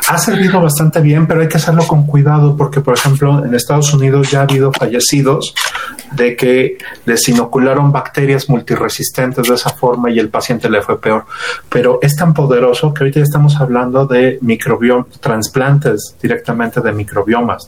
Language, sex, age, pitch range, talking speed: Spanish, male, 30-49, 125-150 Hz, 165 wpm